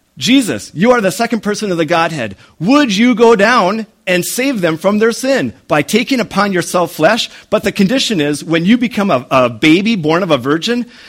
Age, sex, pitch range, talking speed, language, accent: 40-59, male, 150-225 Hz, 205 wpm, English, American